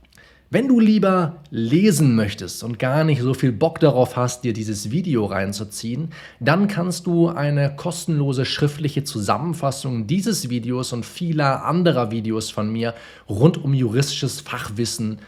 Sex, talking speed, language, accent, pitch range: male, 140 wpm, German, German, 120-165 Hz